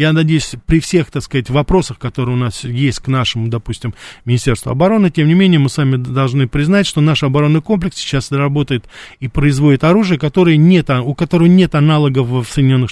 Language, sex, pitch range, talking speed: Russian, male, 130-175 Hz, 185 wpm